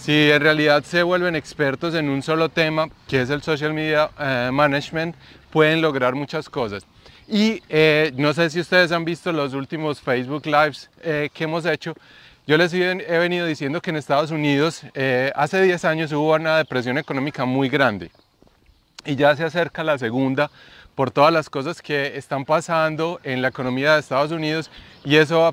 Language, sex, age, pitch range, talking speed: Spanish, male, 30-49, 135-165 Hz, 185 wpm